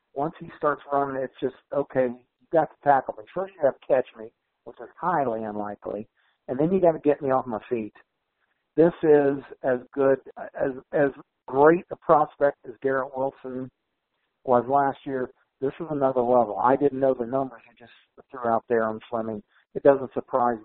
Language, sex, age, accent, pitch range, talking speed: English, male, 60-79, American, 120-150 Hz, 190 wpm